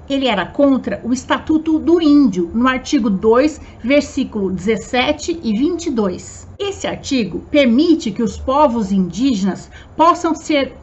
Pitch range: 240-315 Hz